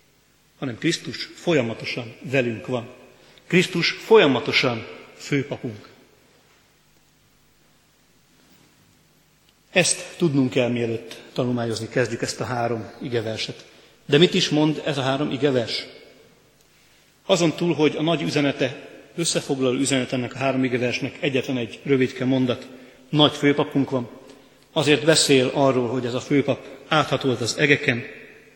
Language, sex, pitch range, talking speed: Hungarian, male, 125-150 Hz, 115 wpm